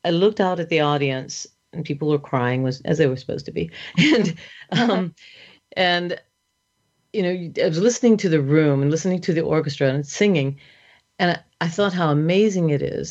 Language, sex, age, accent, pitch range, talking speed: English, female, 40-59, American, 145-185 Hz, 190 wpm